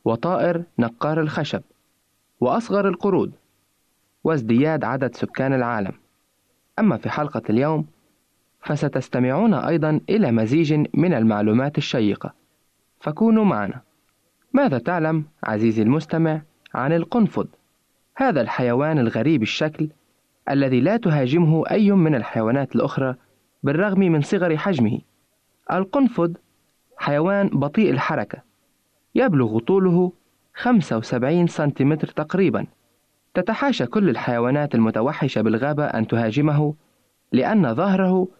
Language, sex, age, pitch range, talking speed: Arabic, male, 20-39, 130-180 Hz, 95 wpm